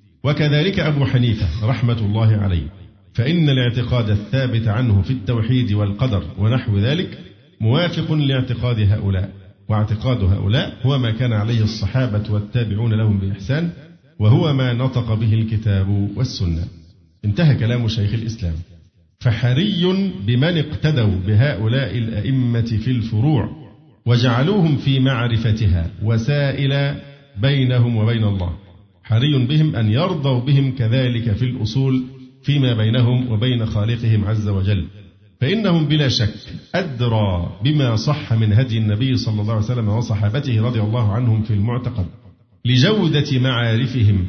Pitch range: 105-130 Hz